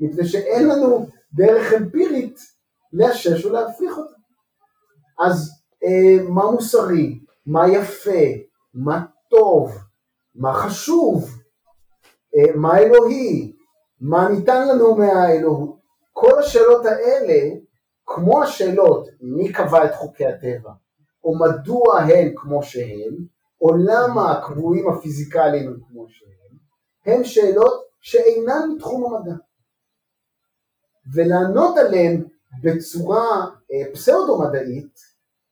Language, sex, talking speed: Hebrew, male, 95 wpm